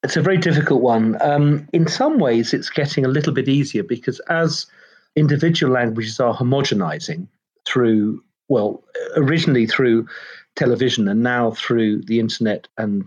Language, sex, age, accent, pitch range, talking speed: English, male, 40-59, British, 120-160 Hz, 145 wpm